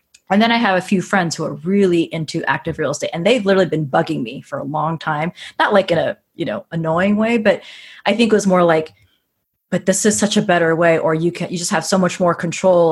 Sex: female